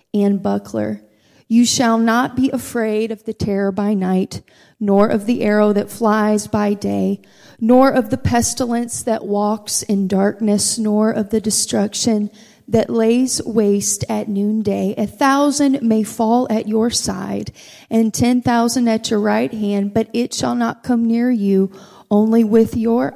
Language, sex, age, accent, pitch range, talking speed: English, female, 40-59, American, 200-230 Hz, 160 wpm